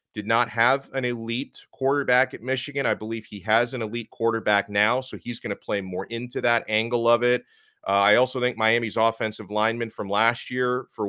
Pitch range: 95-120 Hz